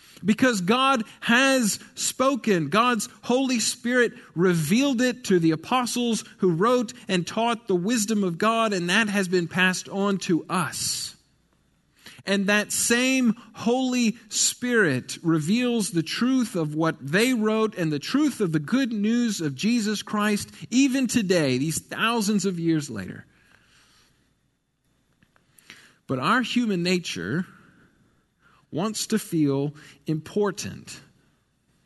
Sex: male